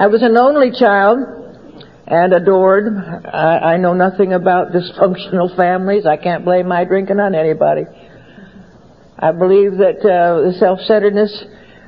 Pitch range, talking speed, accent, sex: 170-200 Hz, 135 wpm, American, female